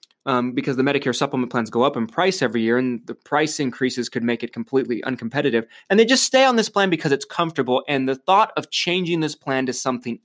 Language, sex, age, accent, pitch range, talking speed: English, male, 20-39, American, 125-175 Hz, 235 wpm